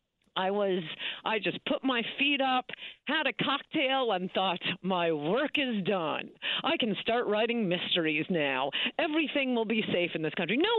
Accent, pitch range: American, 170-230 Hz